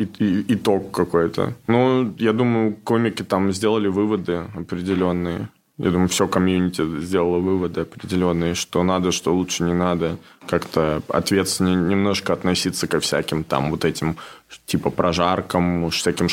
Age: 20-39